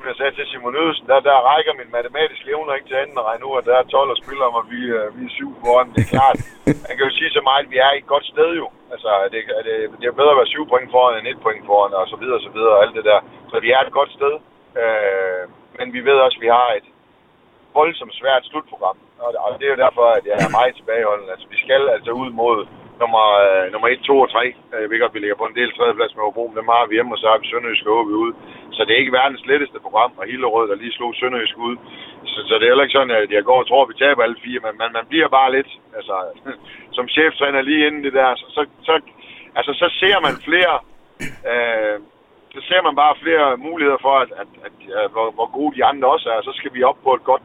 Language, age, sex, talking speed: Danish, 60-79, male, 270 wpm